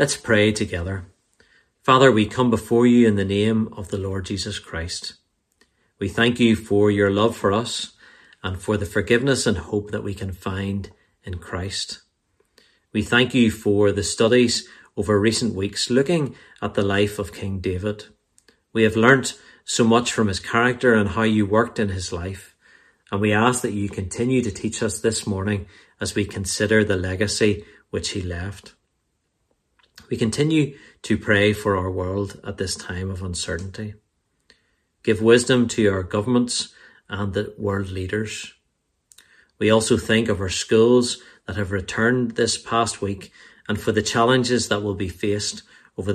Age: 40-59